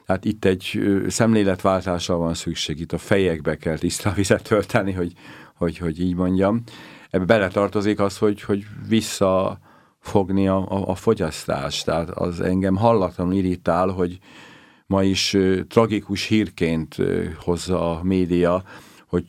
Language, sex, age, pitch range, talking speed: Hungarian, male, 50-69, 85-95 Hz, 125 wpm